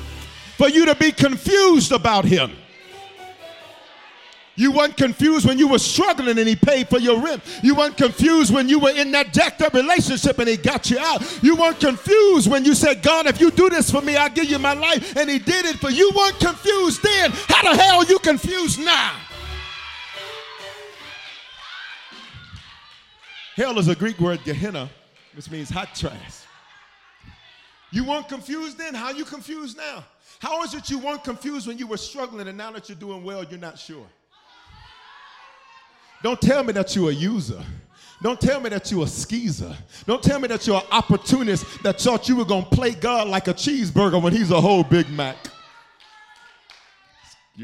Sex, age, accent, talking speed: male, 50-69, American, 185 wpm